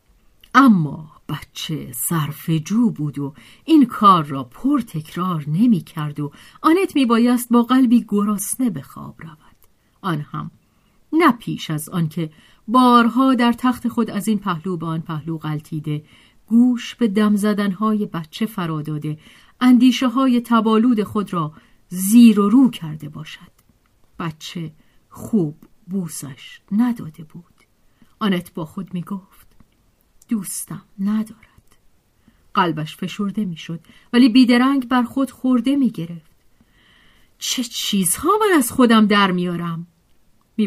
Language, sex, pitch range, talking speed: Persian, female, 160-245 Hz, 125 wpm